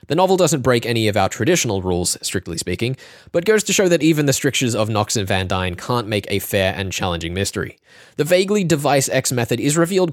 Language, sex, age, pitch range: English, male, 20-39, 105-160 Hz